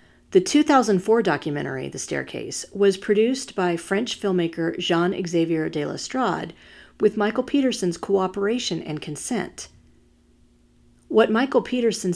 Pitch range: 170-230 Hz